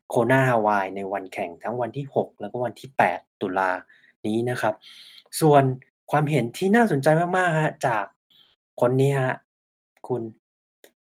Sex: male